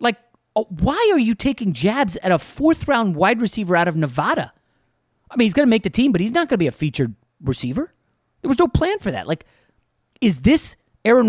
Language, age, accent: English, 30-49, American